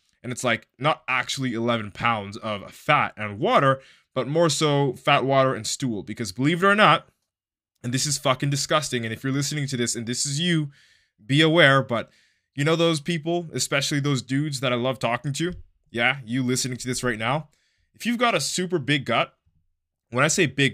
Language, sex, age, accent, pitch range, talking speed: English, male, 20-39, American, 115-145 Hz, 205 wpm